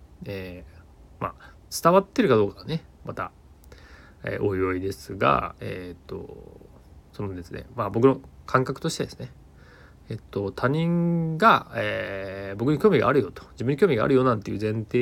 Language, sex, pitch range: Japanese, male, 95-130 Hz